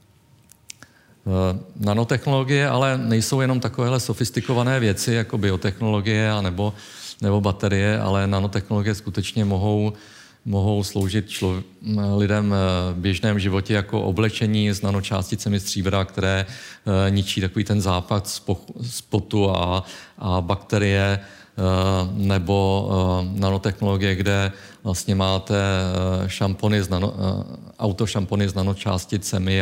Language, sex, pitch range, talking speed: Czech, male, 95-105 Hz, 110 wpm